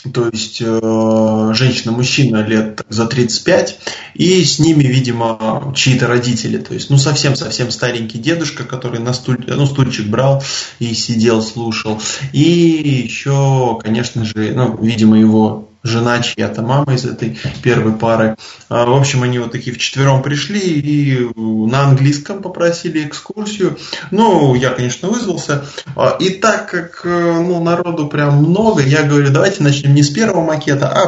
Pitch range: 120-155 Hz